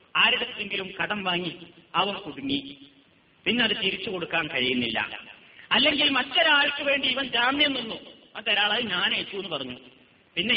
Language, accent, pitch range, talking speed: Malayalam, native, 170-275 Hz, 120 wpm